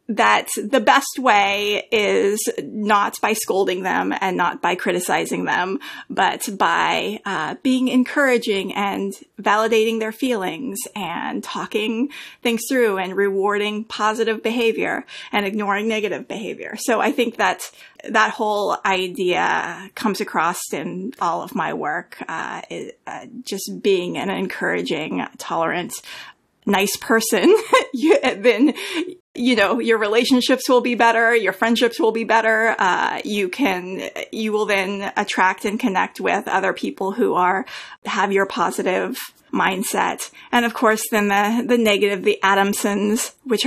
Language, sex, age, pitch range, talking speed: English, female, 30-49, 200-240 Hz, 140 wpm